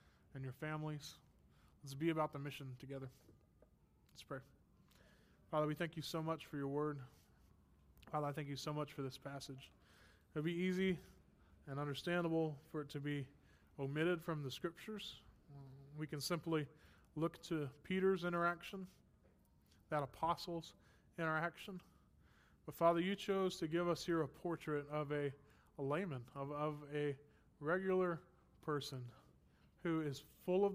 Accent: American